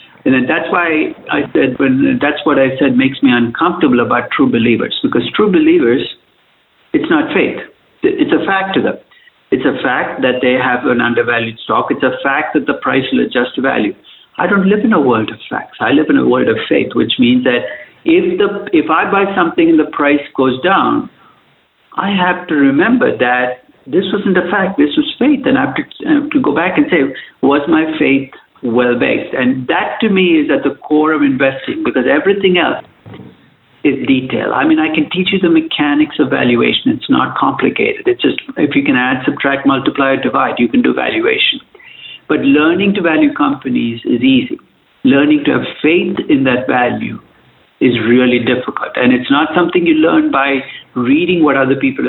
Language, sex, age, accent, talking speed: English, male, 60-79, Indian, 195 wpm